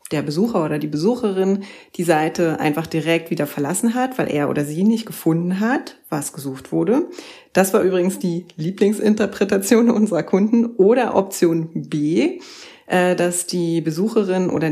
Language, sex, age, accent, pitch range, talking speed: German, female, 30-49, German, 170-215 Hz, 145 wpm